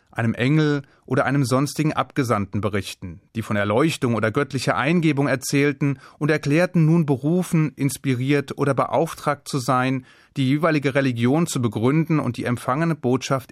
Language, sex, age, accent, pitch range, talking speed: German, male, 30-49, German, 115-150 Hz, 140 wpm